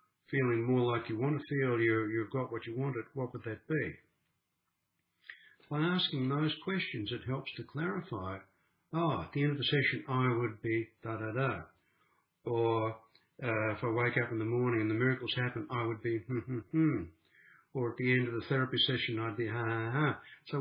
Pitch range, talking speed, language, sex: 110-145 Hz, 190 wpm, English, male